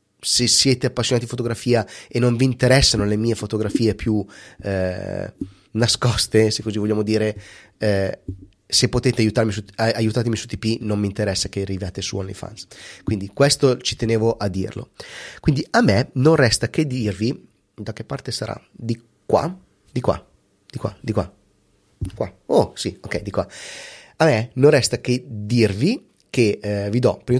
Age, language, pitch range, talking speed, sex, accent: 30-49, Italian, 105-130 Hz, 165 wpm, male, native